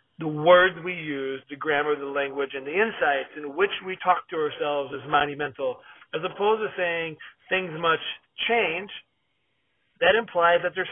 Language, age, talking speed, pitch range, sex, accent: English, 40-59, 165 wpm, 145-205 Hz, male, American